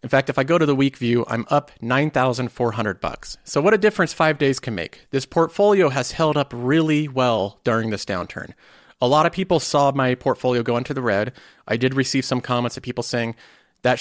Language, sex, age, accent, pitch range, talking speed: English, male, 30-49, American, 120-150 Hz, 220 wpm